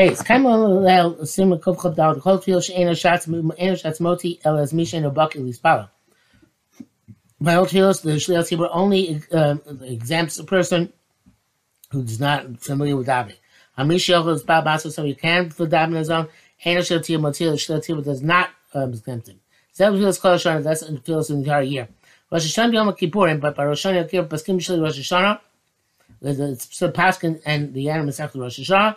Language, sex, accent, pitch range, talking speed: English, male, American, 150-185 Hz, 70 wpm